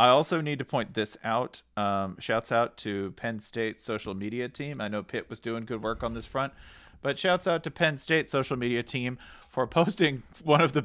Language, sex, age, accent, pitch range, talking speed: English, male, 40-59, American, 115-165 Hz, 220 wpm